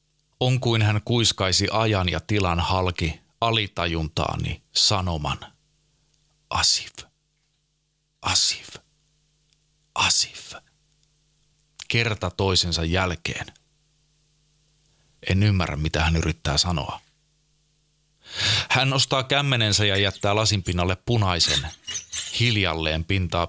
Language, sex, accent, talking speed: Finnish, male, native, 80 wpm